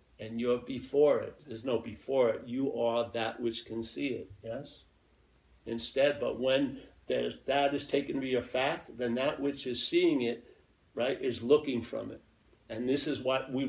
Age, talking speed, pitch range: 50-69, 190 wpm, 115-140 Hz